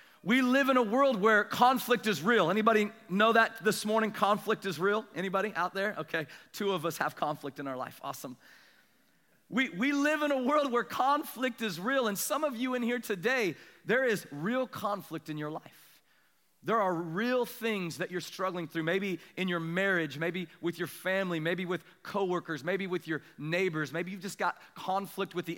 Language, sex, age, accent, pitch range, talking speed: English, male, 40-59, American, 165-225 Hz, 195 wpm